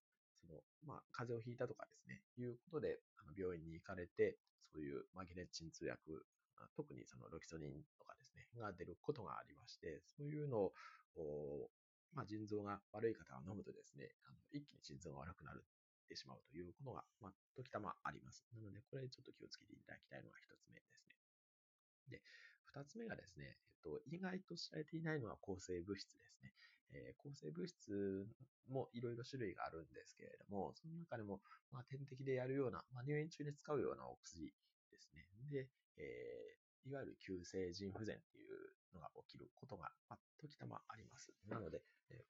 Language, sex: Japanese, male